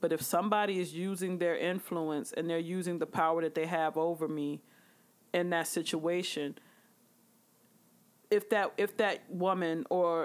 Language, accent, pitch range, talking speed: English, American, 170-200 Hz, 150 wpm